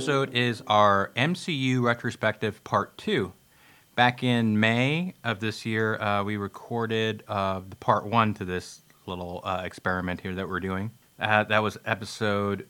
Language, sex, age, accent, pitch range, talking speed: English, male, 30-49, American, 95-115 Hz, 155 wpm